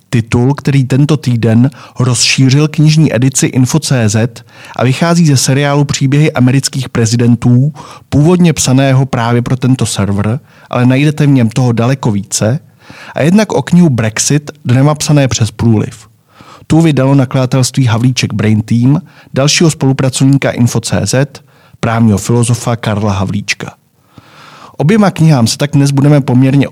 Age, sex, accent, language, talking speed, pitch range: 40-59, male, native, Czech, 130 wpm, 115-145 Hz